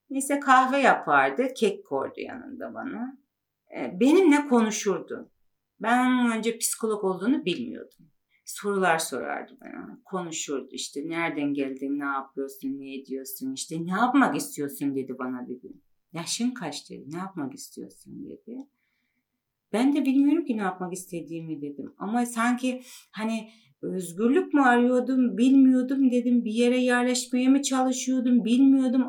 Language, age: Turkish, 40-59